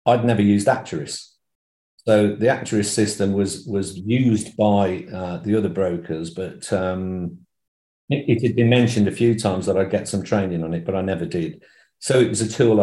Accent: British